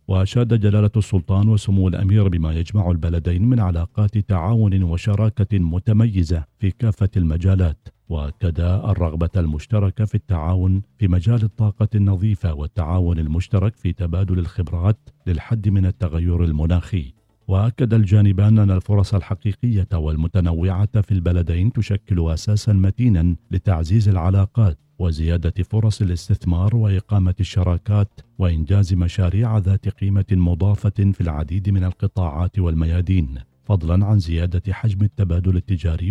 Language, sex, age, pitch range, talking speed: Arabic, male, 50-69, 90-105 Hz, 115 wpm